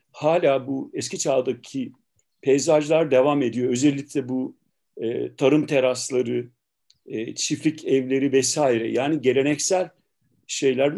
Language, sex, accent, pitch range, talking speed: Turkish, male, native, 135-165 Hz, 95 wpm